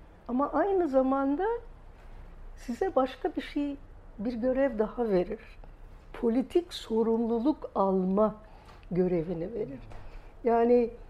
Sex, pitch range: female, 190-260 Hz